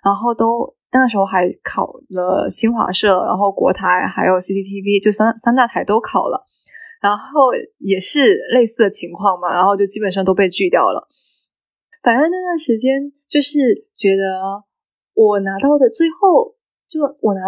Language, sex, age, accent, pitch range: Chinese, female, 20-39, native, 195-270 Hz